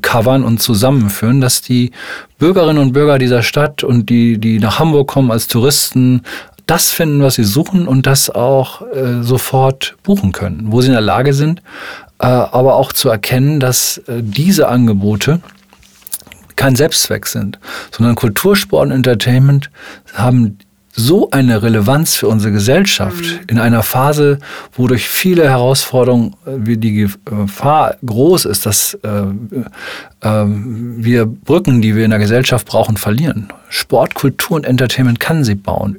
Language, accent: German, German